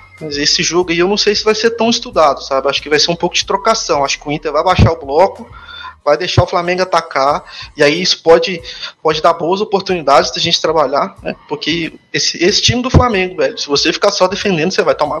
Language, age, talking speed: Portuguese, 20-39, 240 wpm